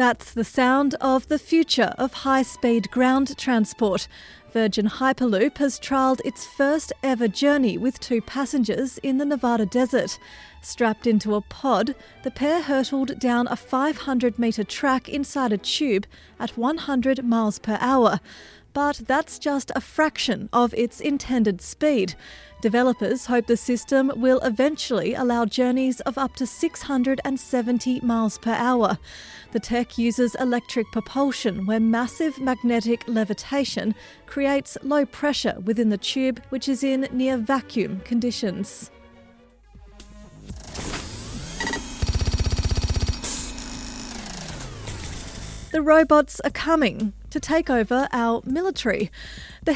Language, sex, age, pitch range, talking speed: English, female, 30-49, 230-270 Hz, 120 wpm